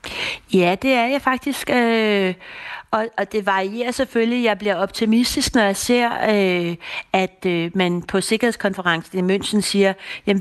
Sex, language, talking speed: female, Danish, 135 wpm